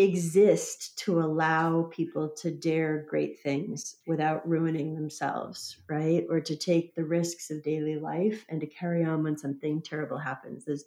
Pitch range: 155-180 Hz